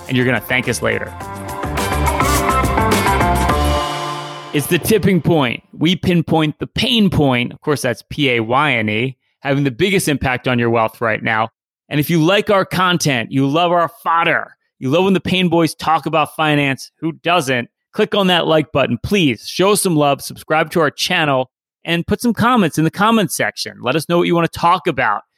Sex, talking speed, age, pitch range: male, 190 wpm, 30-49, 125-165 Hz